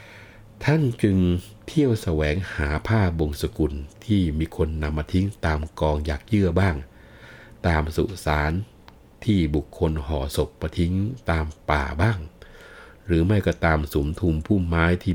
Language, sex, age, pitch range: Thai, male, 60-79, 75-95 Hz